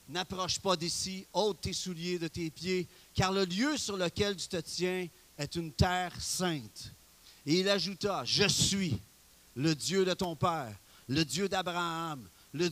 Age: 40-59